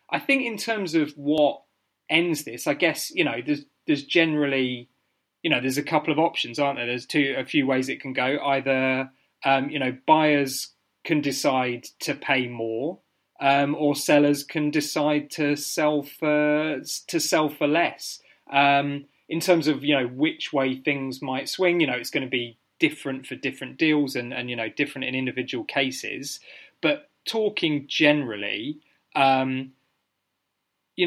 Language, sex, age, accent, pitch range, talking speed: English, male, 30-49, British, 130-155 Hz, 170 wpm